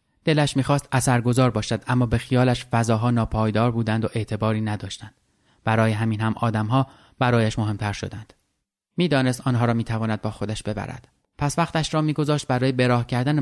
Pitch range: 110-125 Hz